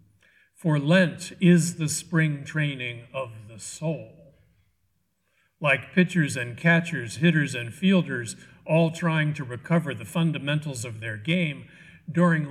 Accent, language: American, English